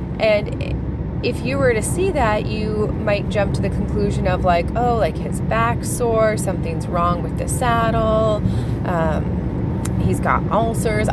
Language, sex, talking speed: English, female, 155 wpm